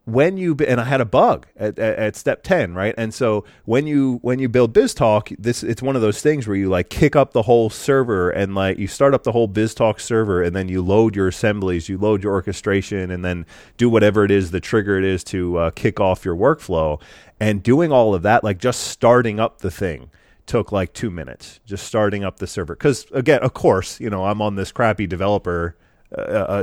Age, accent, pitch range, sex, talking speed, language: 30-49, American, 95-115 Hz, male, 230 wpm, English